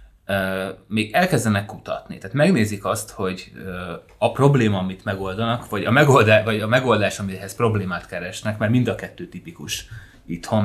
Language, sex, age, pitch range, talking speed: Hungarian, male, 30-49, 95-115 Hz, 145 wpm